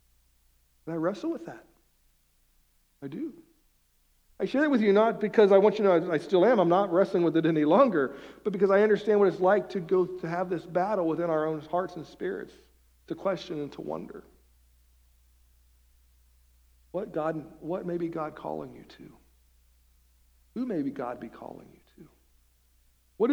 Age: 50-69